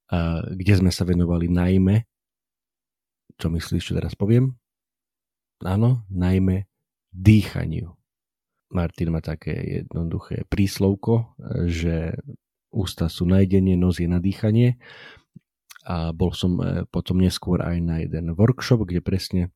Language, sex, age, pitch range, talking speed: Slovak, male, 40-59, 85-95 Hz, 115 wpm